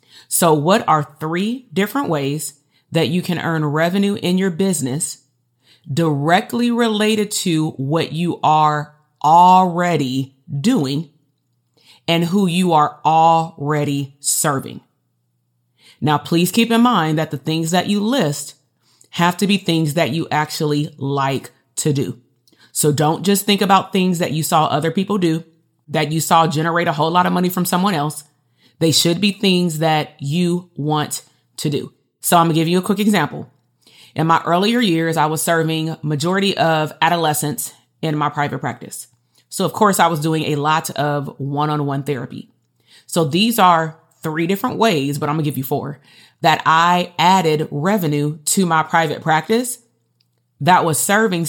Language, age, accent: English, 30-49, American